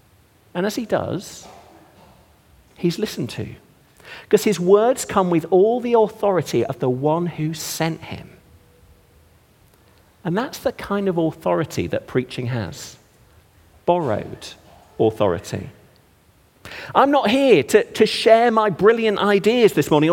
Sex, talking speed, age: male, 130 wpm, 40-59